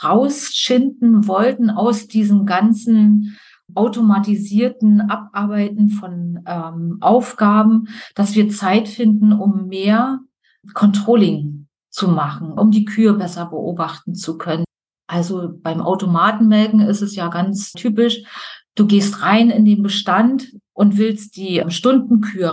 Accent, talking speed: German, 115 wpm